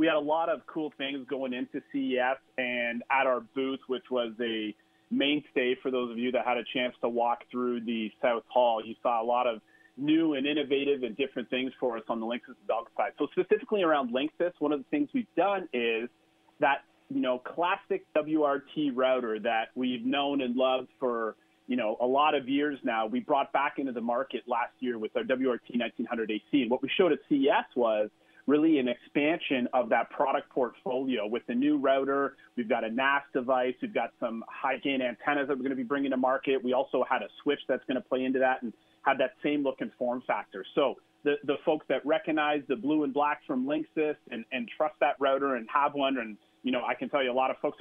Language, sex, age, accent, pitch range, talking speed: English, male, 30-49, American, 125-150 Hz, 225 wpm